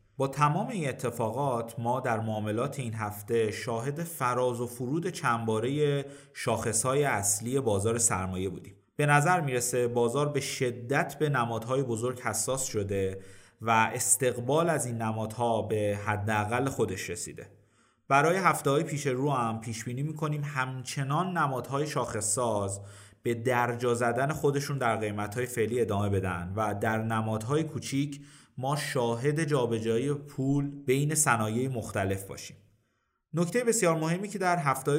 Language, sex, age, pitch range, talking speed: Persian, male, 30-49, 110-140 Hz, 135 wpm